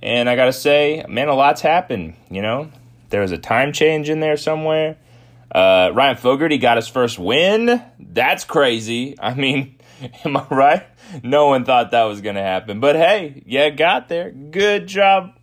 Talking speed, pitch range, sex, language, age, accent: 185 wpm, 120-150 Hz, male, English, 30-49, American